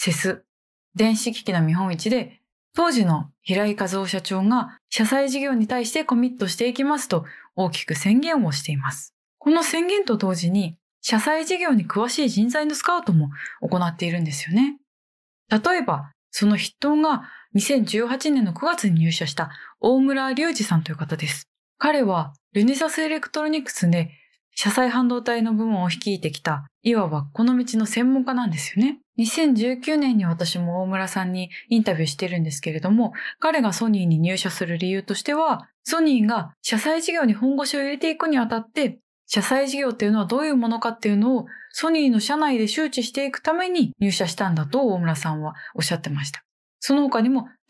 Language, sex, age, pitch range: Japanese, female, 20-39, 180-275 Hz